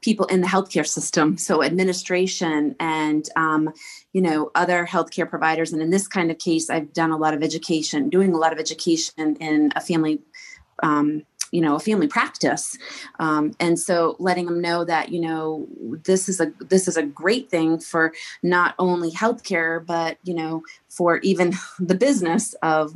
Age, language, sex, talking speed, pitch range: 30-49, English, female, 180 wpm, 160-195 Hz